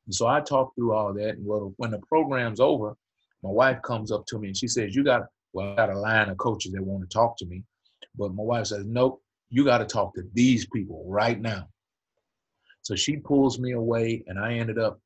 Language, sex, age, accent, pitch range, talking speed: English, male, 30-49, American, 95-115 Hz, 240 wpm